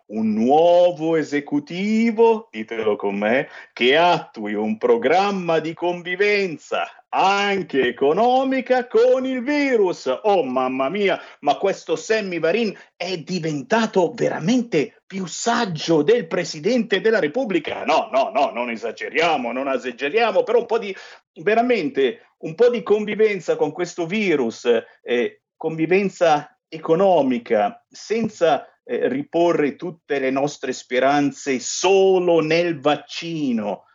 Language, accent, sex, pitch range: Italian, native, male, 160-255 Hz